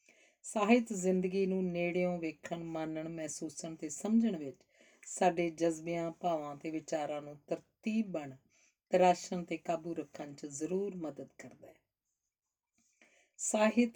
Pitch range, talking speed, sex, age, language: 160-190 Hz, 120 wpm, female, 50-69, Punjabi